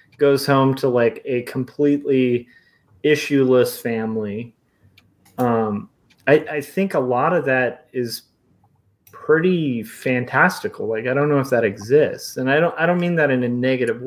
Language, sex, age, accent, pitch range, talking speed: English, male, 30-49, American, 115-145 Hz, 155 wpm